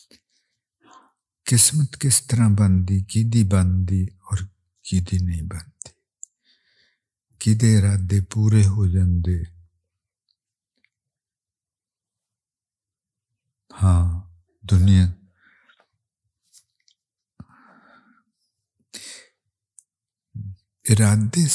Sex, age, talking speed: male, 60-79, 55 wpm